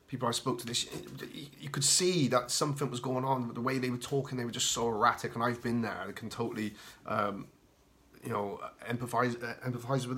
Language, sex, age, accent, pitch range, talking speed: English, male, 30-49, British, 110-125 Hz, 220 wpm